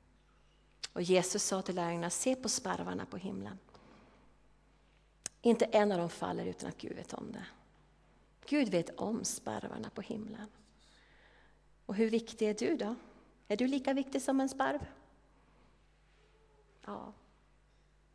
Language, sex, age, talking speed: Swedish, female, 30-49, 135 wpm